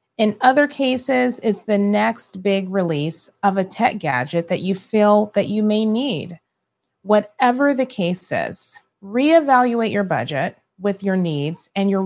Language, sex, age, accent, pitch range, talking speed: English, female, 30-49, American, 180-240 Hz, 155 wpm